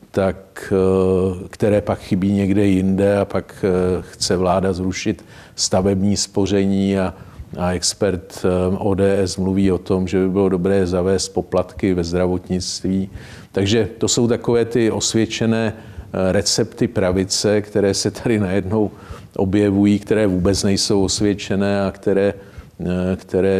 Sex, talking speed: male, 120 wpm